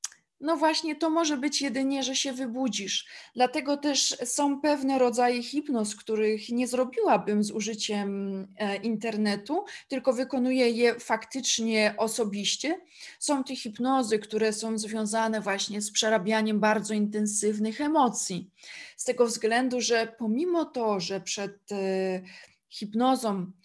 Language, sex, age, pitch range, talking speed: Polish, female, 20-39, 205-250 Hz, 120 wpm